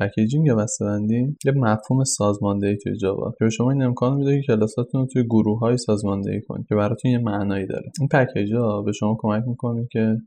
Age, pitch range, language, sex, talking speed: 20-39, 110-125 Hz, Persian, male, 200 wpm